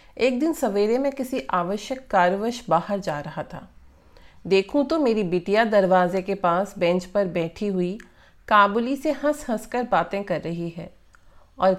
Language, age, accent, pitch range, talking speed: English, 40-59, Indian, 180-245 Hz, 165 wpm